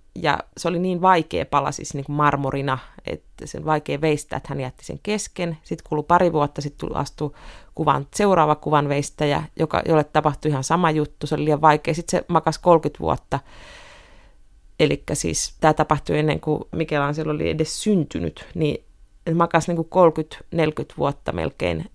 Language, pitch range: Finnish, 145-170 Hz